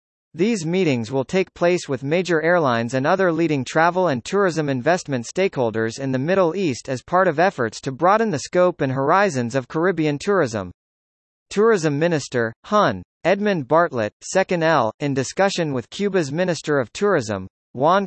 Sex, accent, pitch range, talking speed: male, American, 130-185 Hz, 160 wpm